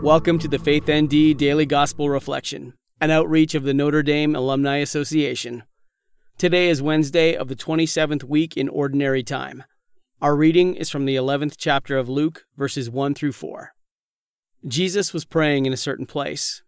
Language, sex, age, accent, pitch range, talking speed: English, male, 40-59, American, 135-155 Hz, 165 wpm